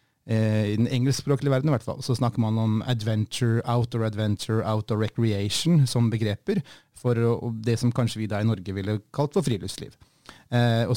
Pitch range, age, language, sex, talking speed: 110-130 Hz, 30-49, English, male, 170 wpm